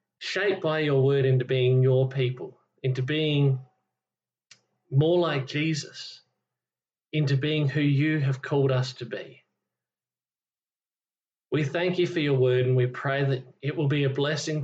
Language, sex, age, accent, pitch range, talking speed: English, male, 40-59, Australian, 130-170 Hz, 150 wpm